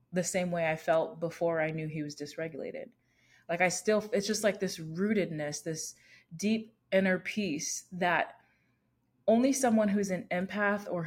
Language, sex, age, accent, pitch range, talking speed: English, female, 20-39, American, 165-200 Hz, 165 wpm